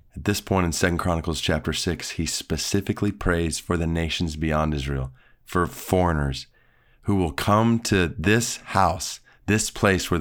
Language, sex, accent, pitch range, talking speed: English, male, American, 90-115 Hz, 160 wpm